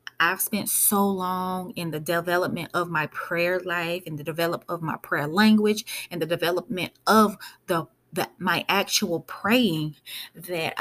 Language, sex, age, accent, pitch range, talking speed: English, female, 20-39, American, 170-220 Hz, 155 wpm